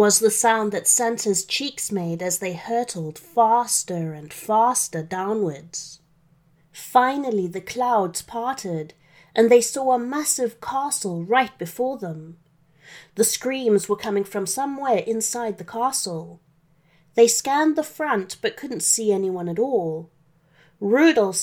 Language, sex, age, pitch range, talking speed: English, female, 30-49, 165-240 Hz, 130 wpm